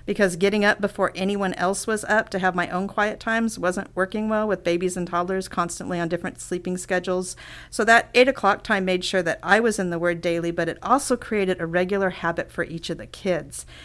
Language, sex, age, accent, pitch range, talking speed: English, female, 50-69, American, 175-220 Hz, 225 wpm